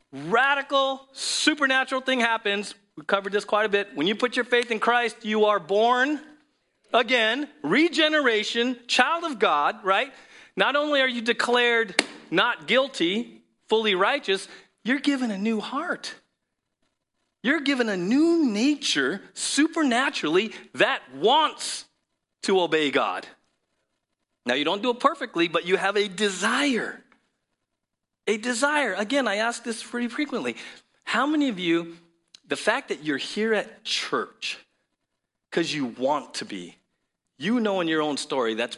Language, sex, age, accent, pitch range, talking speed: English, male, 40-59, American, 205-285 Hz, 145 wpm